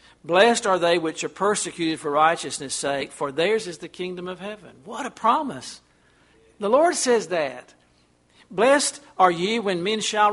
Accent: American